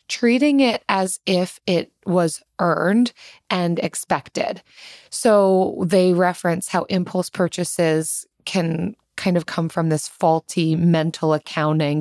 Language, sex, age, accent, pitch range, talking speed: English, female, 20-39, American, 160-195 Hz, 120 wpm